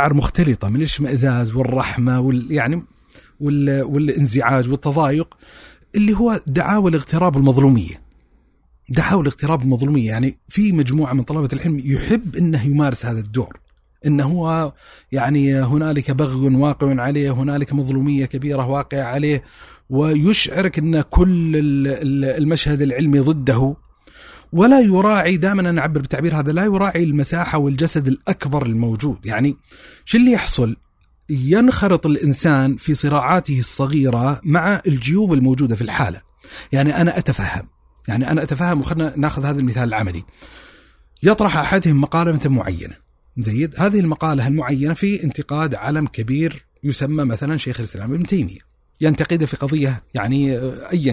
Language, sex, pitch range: Arabic, male, 130-160 Hz